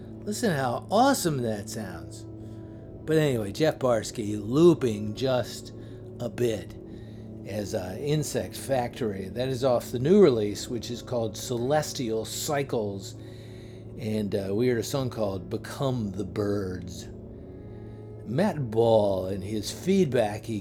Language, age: English, 50-69